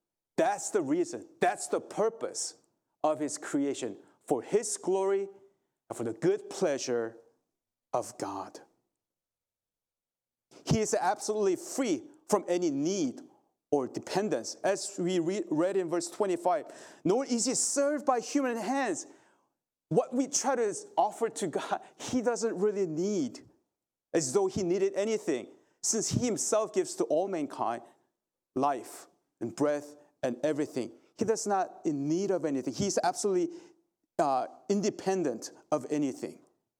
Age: 40-59